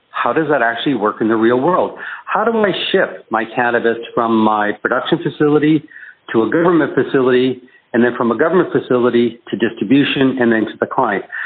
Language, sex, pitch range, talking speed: English, male, 120-150 Hz, 190 wpm